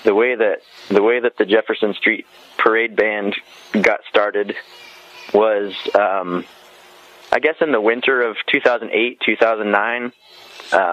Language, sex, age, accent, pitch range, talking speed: English, male, 20-39, American, 105-130 Hz, 125 wpm